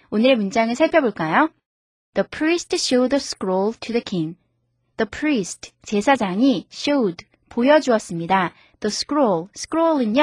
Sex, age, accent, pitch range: female, 20-39, native, 195-280 Hz